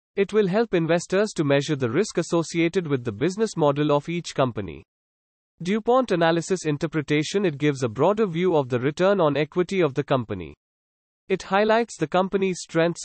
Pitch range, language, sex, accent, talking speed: 135-180 Hz, English, male, Indian, 170 wpm